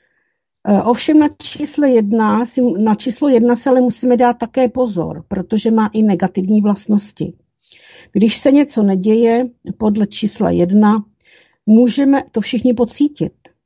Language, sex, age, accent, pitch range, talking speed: Czech, female, 50-69, native, 195-245 Hz, 125 wpm